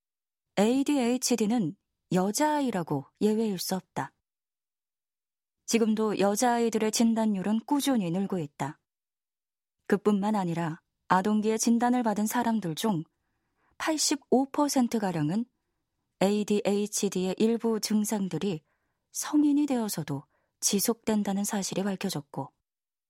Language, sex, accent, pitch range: Korean, female, native, 180-235 Hz